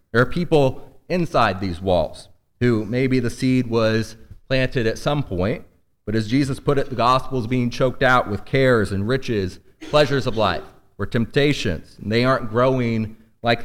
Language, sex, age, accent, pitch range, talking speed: English, male, 30-49, American, 110-135 Hz, 175 wpm